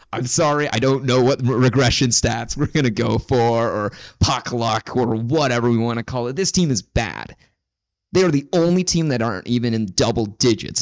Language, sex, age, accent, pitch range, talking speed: English, male, 20-39, American, 115-145 Hz, 210 wpm